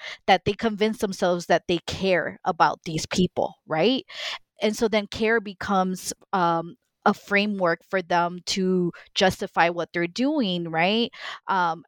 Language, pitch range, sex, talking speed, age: English, 170-200 Hz, female, 140 wpm, 20-39